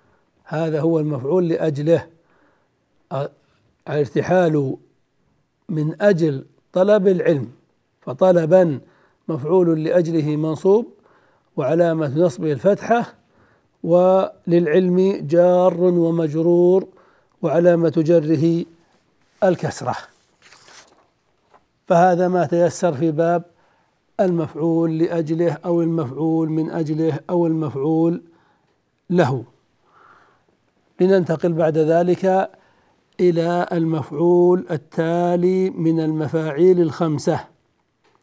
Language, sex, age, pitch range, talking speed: Arabic, male, 60-79, 155-175 Hz, 70 wpm